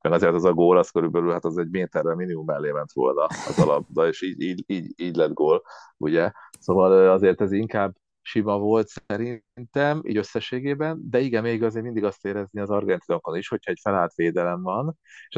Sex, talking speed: male, 185 wpm